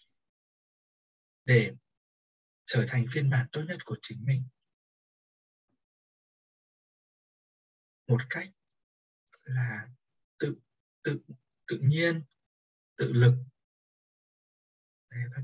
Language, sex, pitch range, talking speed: Vietnamese, male, 115-135 Hz, 80 wpm